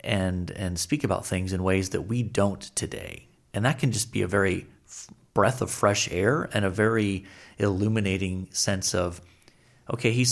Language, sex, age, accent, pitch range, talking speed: English, male, 30-49, American, 95-115 Hz, 180 wpm